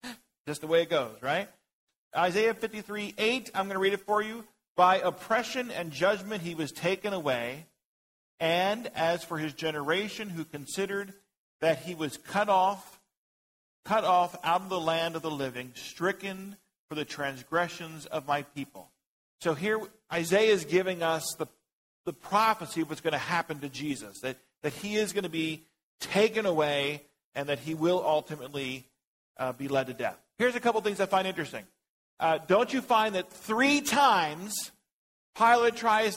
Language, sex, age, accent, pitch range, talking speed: English, male, 50-69, American, 150-205 Hz, 170 wpm